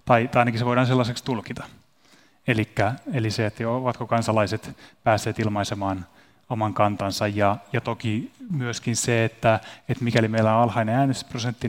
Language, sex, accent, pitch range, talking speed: Finnish, male, native, 110-125 Hz, 145 wpm